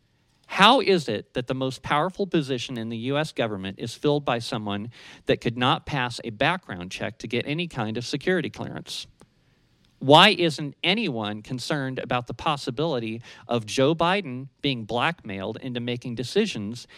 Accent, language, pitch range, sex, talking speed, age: American, English, 125-160 Hz, male, 160 wpm, 50-69